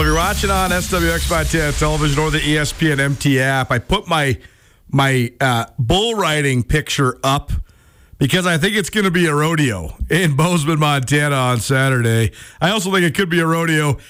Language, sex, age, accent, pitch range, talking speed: English, male, 40-59, American, 135-175 Hz, 185 wpm